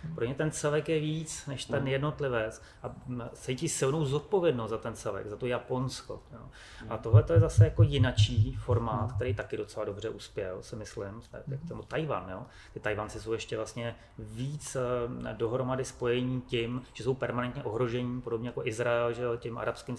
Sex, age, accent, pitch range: male, 30-49, native, 115-130 Hz